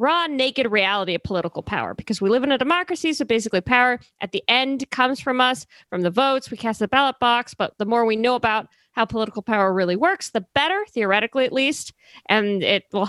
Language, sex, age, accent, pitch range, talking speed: English, female, 40-59, American, 185-245 Hz, 220 wpm